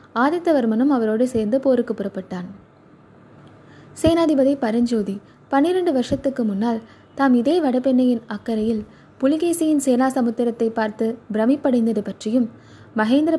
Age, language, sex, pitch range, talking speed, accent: 20-39, Tamil, female, 215-270 Hz, 95 wpm, native